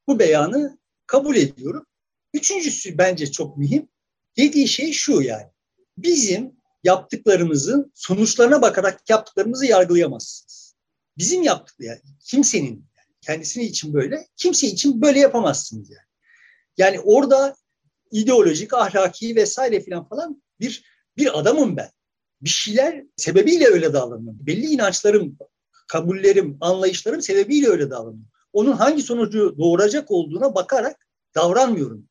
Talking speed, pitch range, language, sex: 110 wpm, 180-290 Hz, Turkish, male